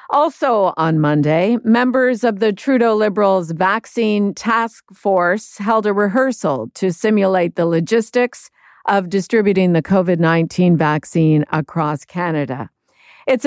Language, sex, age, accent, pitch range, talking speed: English, female, 50-69, American, 165-210 Hz, 115 wpm